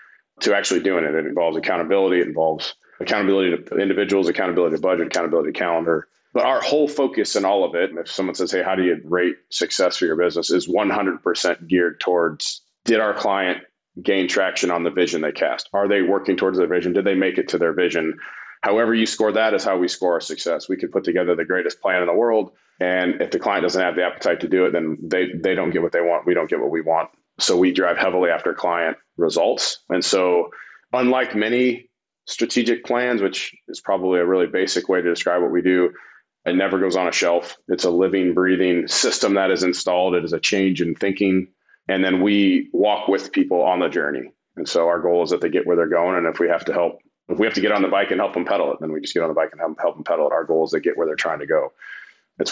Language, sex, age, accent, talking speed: English, male, 30-49, American, 250 wpm